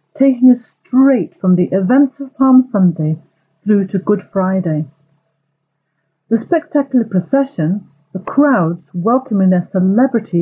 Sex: female